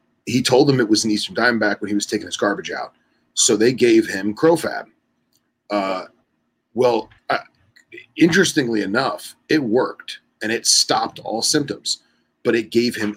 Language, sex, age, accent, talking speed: English, male, 30-49, American, 160 wpm